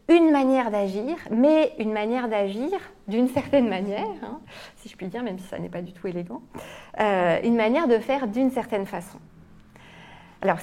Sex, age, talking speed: female, 30-49, 180 wpm